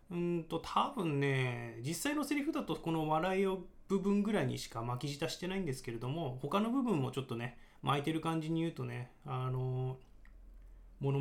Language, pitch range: Japanese, 125-160 Hz